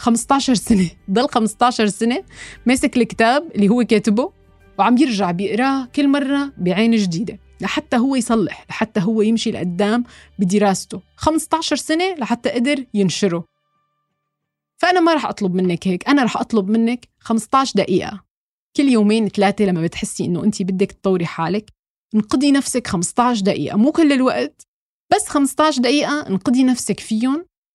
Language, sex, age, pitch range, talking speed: Arabic, female, 20-39, 200-270 Hz, 140 wpm